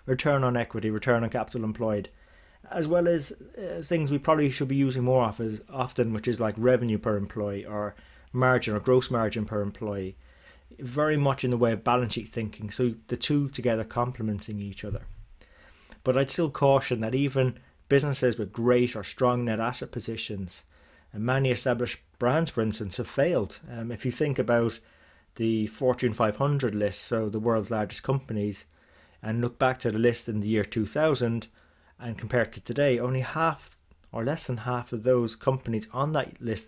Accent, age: British, 30-49